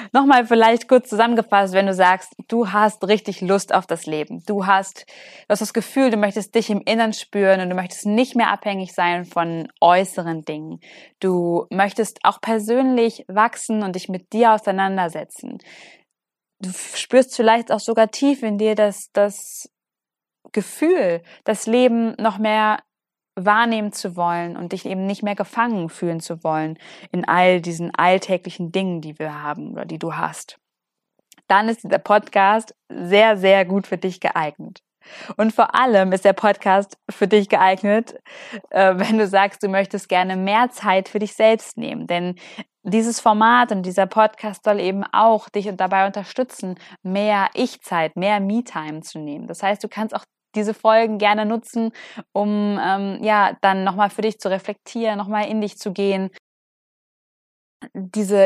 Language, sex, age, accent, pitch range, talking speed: German, female, 20-39, German, 185-220 Hz, 160 wpm